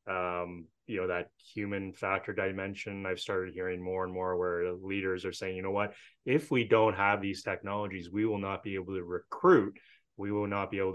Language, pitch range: English, 95-115 Hz